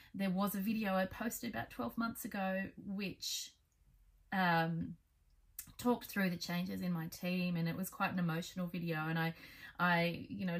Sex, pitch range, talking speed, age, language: female, 185-230 Hz, 175 wpm, 30-49, English